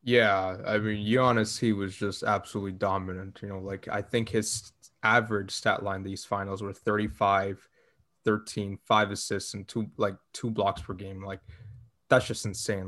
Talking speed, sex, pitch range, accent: 170 wpm, male, 100-115 Hz, American